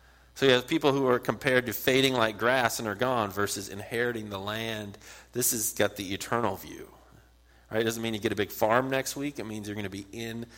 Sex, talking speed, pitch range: male, 235 wpm, 90-120 Hz